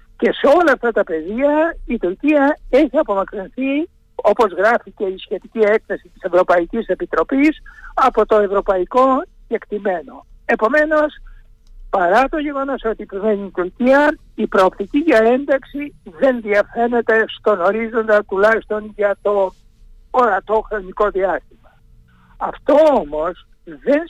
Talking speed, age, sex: 120 wpm, 60-79, male